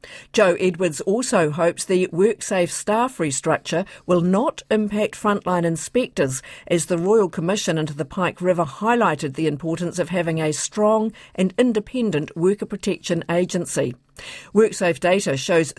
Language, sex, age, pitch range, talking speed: English, female, 50-69, 160-210 Hz, 135 wpm